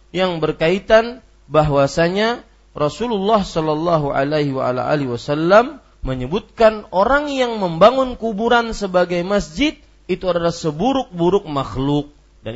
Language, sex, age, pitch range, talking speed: Malay, male, 40-59, 155-235 Hz, 90 wpm